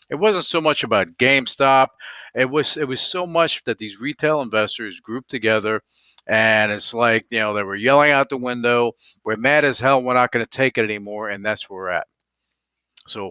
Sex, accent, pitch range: male, American, 105-135 Hz